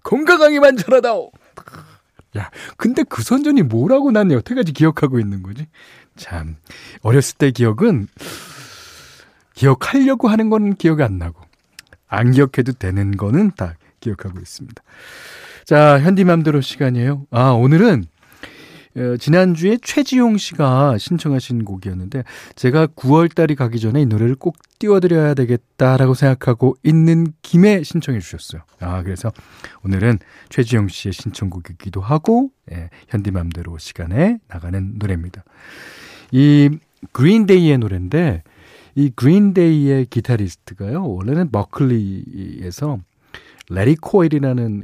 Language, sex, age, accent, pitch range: Korean, male, 40-59, native, 100-160 Hz